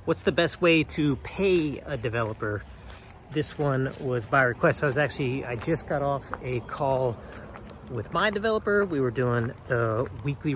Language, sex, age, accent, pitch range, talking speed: English, male, 30-49, American, 125-165 Hz, 170 wpm